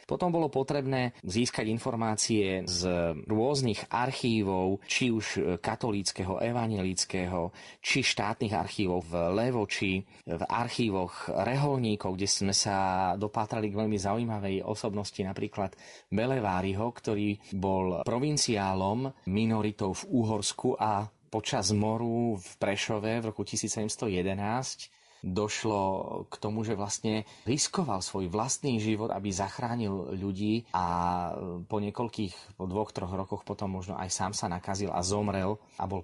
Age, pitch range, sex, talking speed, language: 20-39, 95-115 Hz, male, 125 wpm, Slovak